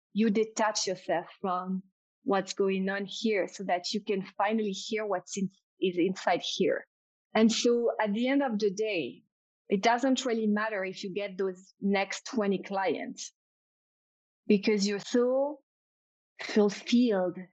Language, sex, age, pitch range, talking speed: English, female, 30-49, 195-225 Hz, 135 wpm